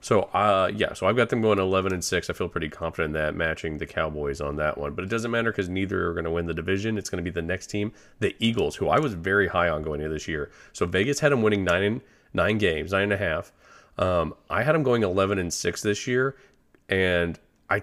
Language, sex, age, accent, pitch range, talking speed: English, male, 30-49, American, 85-110 Hz, 265 wpm